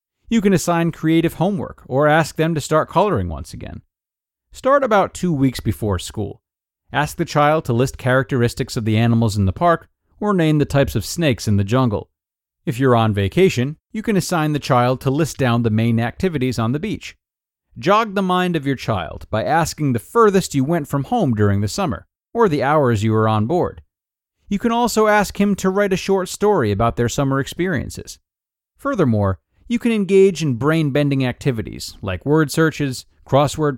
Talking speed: 190 wpm